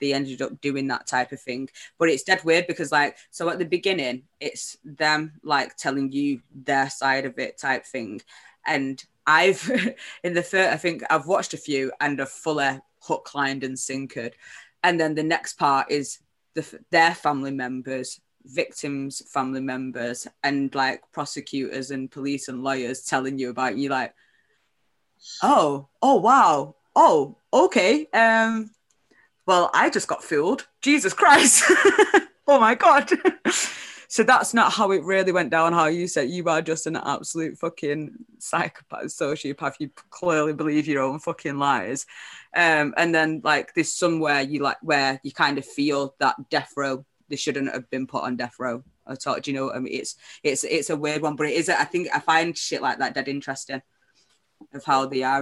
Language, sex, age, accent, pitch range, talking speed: English, female, 20-39, British, 135-165 Hz, 180 wpm